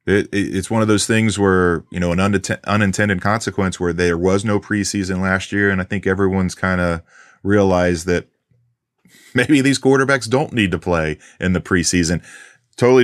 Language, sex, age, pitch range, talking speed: English, male, 30-49, 90-115 Hz, 185 wpm